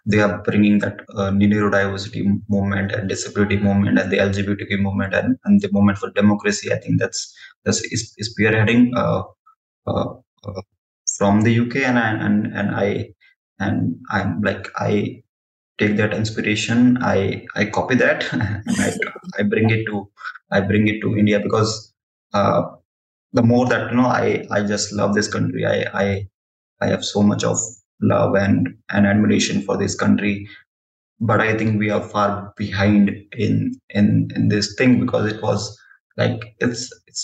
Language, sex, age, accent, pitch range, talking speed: English, male, 20-39, Indian, 100-115 Hz, 170 wpm